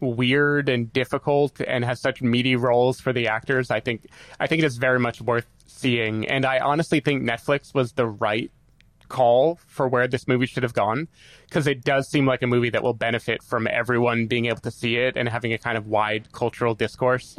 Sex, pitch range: male, 120-140 Hz